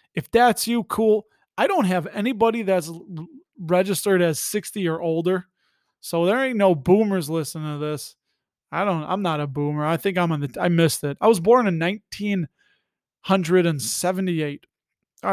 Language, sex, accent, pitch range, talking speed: English, male, American, 160-215 Hz, 165 wpm